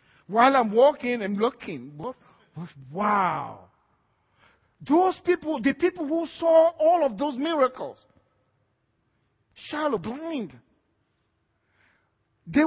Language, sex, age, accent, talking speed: English, male, 50-69, Nigerian, 90 wpm